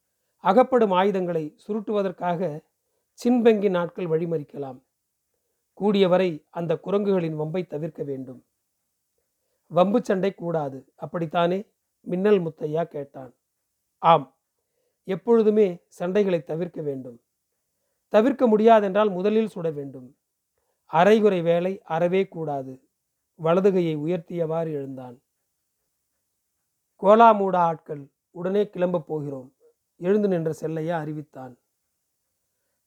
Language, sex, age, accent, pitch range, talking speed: Tamil, male, 40-59, native, 155-205 Hz, 80 wpm